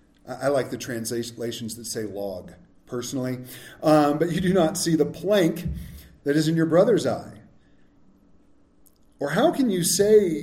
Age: 40-59